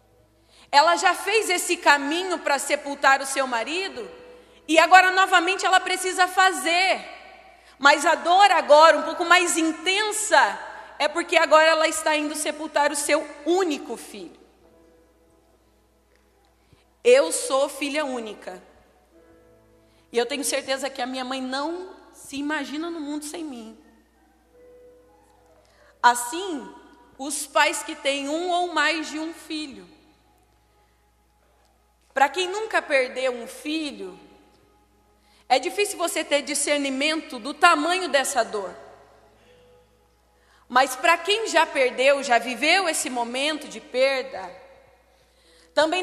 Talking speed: 120 wpm